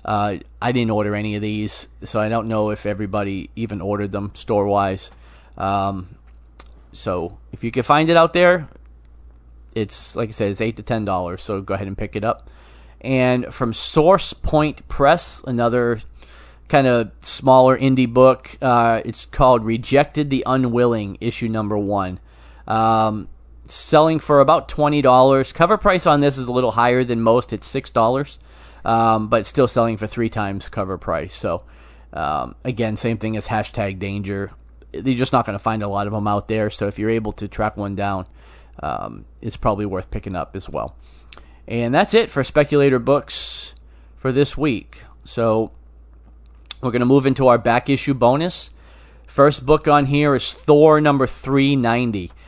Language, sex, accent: English, male, American